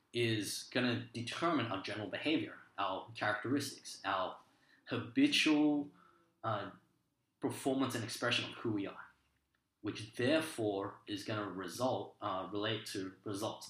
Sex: male